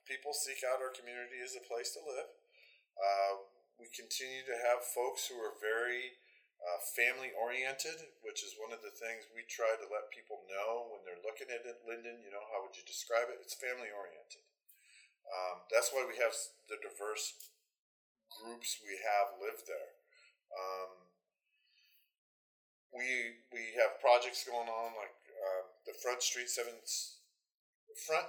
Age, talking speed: 40-59, 160 wpm